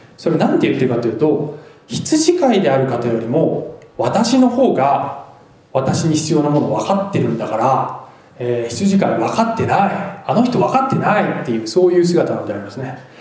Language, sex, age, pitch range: Japanese, male, 20-39, 130-195 Hz